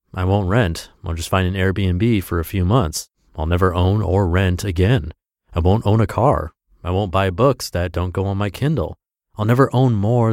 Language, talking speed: English, 215 wpm